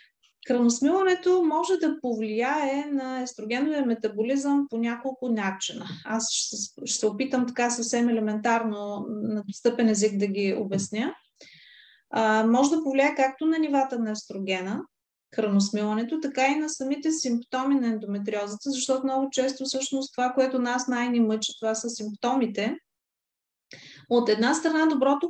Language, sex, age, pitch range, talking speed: Bulgarian, female, 30-49, 220-265 Hz, 140 wpm